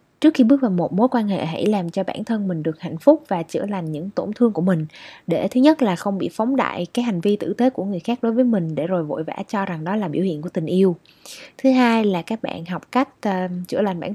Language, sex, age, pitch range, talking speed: Vietnamese, female, 20-39, 180-245 Hz, 285 wpm